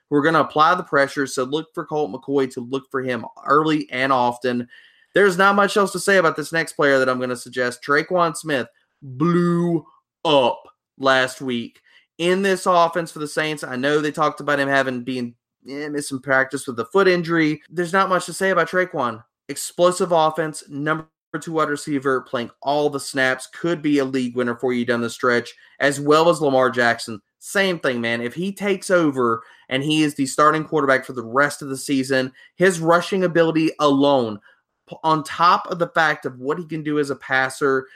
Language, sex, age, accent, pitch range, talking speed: English, male, 20-39, American, 130-165 Hz, 200 wpm